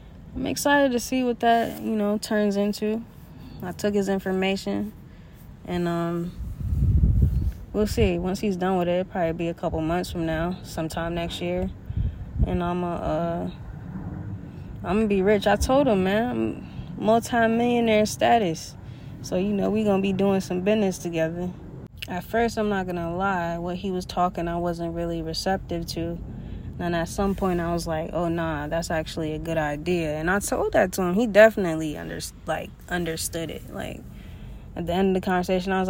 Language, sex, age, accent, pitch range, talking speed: English, female, 20-39, American, 160-195 Hz, 185 wpm